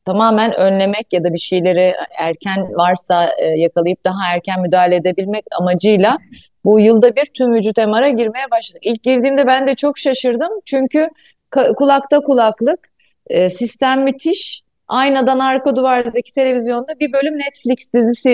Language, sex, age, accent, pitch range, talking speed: Turkish, female, 30-49, native, 190-275 Hz, 135 wpm